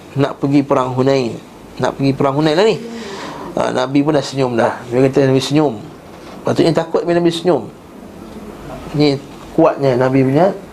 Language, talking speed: Malay, 160 wpm